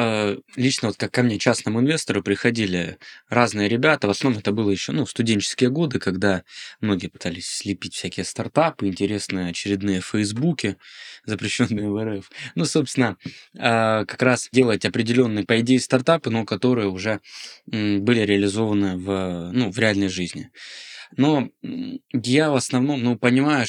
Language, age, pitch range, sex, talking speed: Russian, 20-39, 100-125 Hz, male, 140 wpm